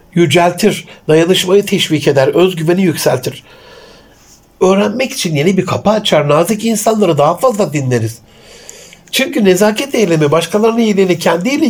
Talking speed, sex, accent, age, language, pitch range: 125 wpm, male, native, 60-79, Turkish, 145-195 Hz